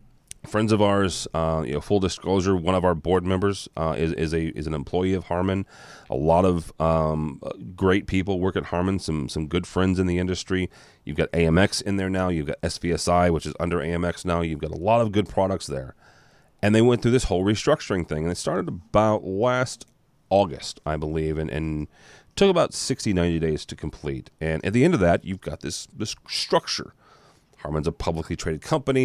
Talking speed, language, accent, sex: 210 wpm, English, American, male